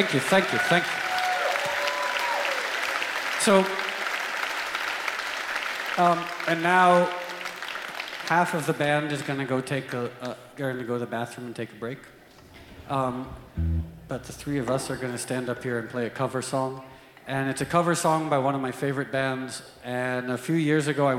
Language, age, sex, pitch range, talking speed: English, 50-69, male, 125-150 Hz, 165 wpm